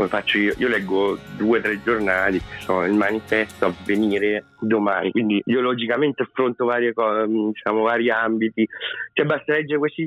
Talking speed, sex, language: 165 wpm, male, Italian